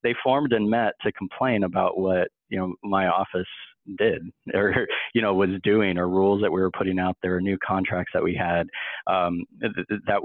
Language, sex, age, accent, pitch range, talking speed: English, male, 40-59, American, 90-100 Hz, 200 wpm